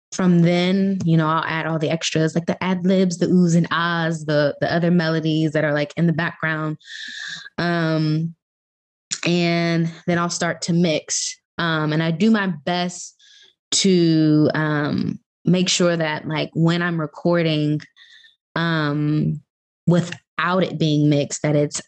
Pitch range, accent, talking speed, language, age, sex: 150-180 Hz, American, 155 wpm, English, 20-39, female